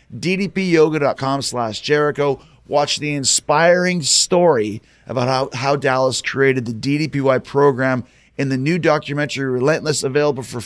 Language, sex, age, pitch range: English, male, 30-49, 130-155 Hz